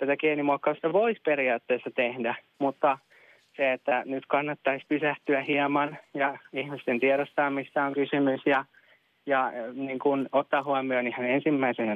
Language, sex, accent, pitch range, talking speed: Finnish, male, native, 135-150 Hz, 120 wpm